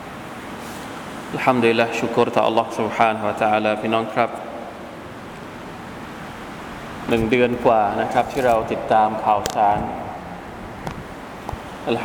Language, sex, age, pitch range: Thai, male, 20-39, 110-130 Hz